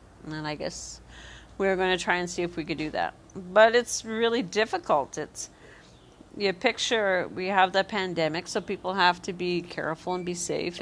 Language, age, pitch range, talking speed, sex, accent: English, 50-69, 155-195 Hz, 200 wpm, female, American